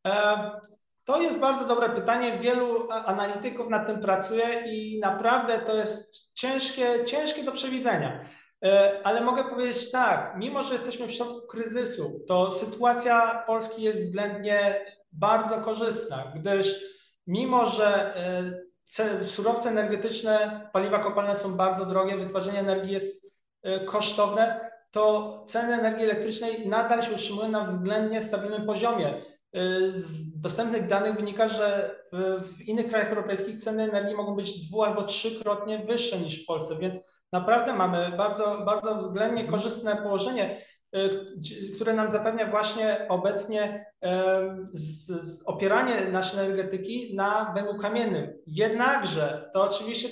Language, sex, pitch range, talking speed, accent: Polish, male, 195-225 Hz, 120 wpm, native